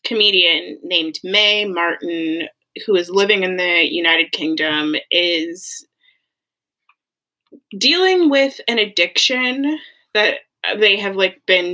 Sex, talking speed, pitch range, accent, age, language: female, 105 wpm, 175-265 Hz, American, 20-39, English